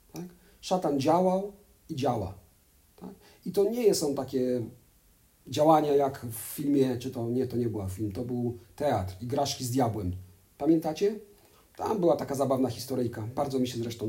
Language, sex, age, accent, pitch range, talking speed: Polish, male, 40-59, native, 110-160 Hz, 160 wpm